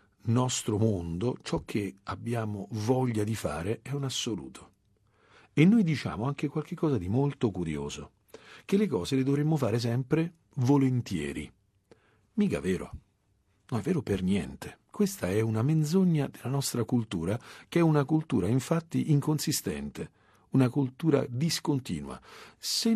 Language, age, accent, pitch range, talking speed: Italian, 50-69, native, 100-135 Hz, 135 wpm